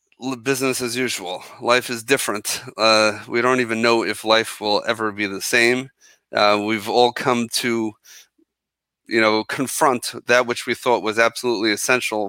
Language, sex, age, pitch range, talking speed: English, male, 30-49, 105-125 Hz, 160 wpm